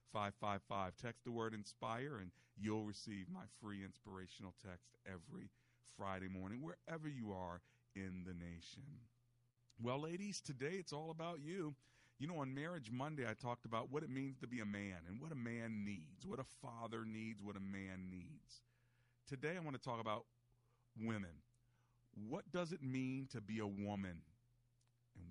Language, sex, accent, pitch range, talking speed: English, male, American, 105-135 Hz, 175 wpm